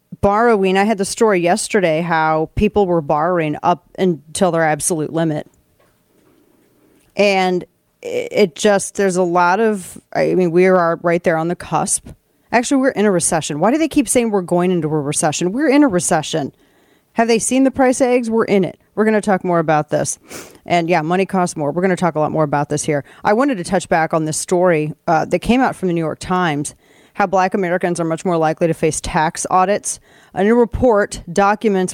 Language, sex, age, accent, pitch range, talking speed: English, female, 30-49, American, 165-210 Hz, 215 wpm